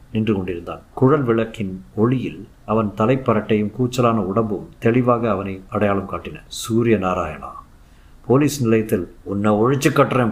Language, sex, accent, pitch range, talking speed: Tamil, male, native, 105-135 Hz, 115 wpm